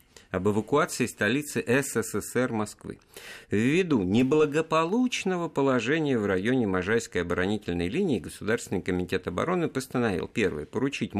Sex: male